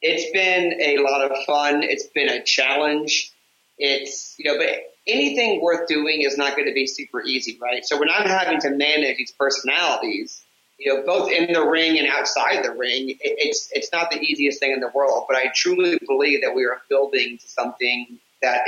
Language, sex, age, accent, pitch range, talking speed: English, male, 30-49, American, 135-190 Hz, 195 wpm